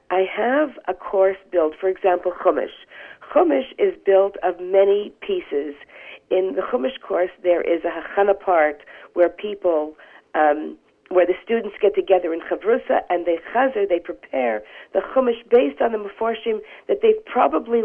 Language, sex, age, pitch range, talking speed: English, female, 50-69, 175-230 Hz, 160 wpm